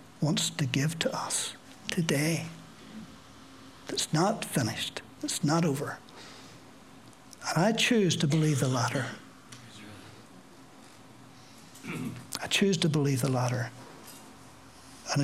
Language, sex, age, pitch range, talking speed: English, male, 60-79, 155-195 Hz, 100 wpm